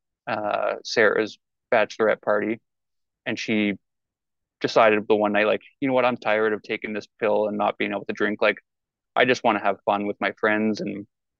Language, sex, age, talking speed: English, male, 20-39, 195 wpm